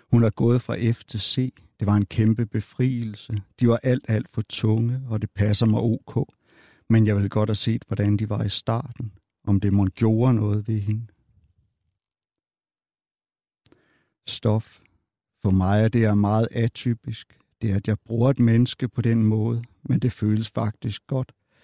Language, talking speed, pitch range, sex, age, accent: Danish, 175 wpm, 105-120 Hz, male, 60-79, native